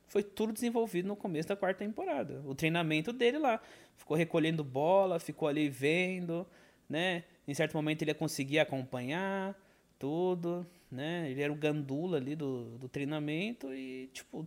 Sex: male